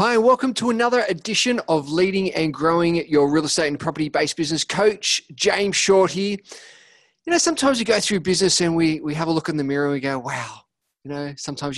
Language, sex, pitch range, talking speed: English, male, 160-215 Hz, 215 wpm